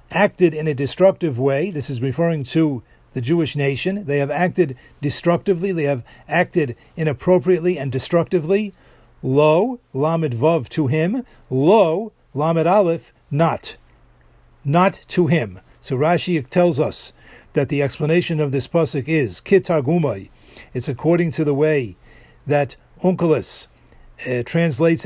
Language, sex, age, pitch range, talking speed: English, male, 50-69, 135-180 Hz, 130 wpm